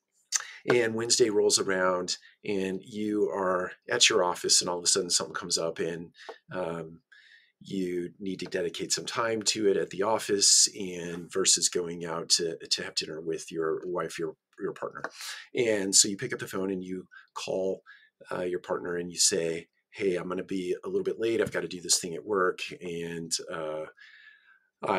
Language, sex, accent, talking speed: English, male, American, 190 wpm